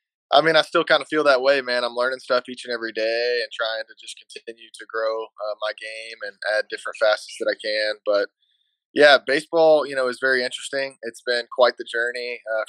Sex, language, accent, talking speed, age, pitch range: male, English, American, 225 wpm, 20-39, 110-125 Hz